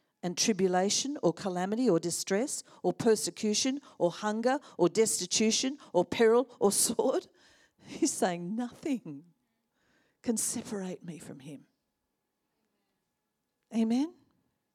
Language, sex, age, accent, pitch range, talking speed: English, female, 50-69, Australian, 175-225 Hz, 100 wpm